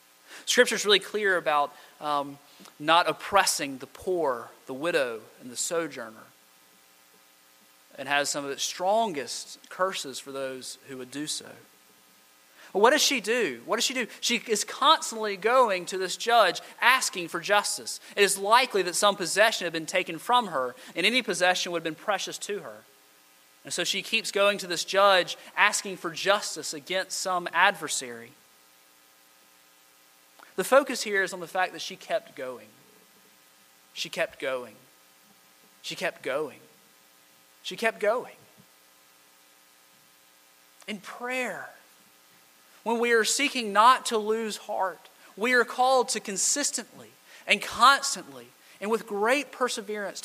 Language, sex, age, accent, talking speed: English, male, 30-49, American, 145 wpm